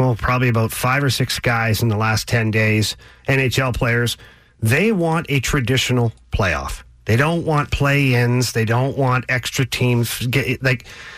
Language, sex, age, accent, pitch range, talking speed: English, male, 40-59, American, 120-155 Hz, 155 wpm